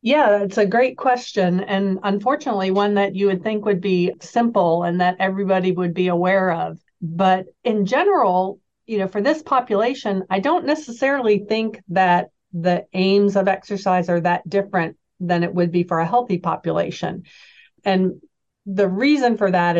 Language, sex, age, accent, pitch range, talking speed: English, female, 50-69, American, 175-205 Hz, 165 wpm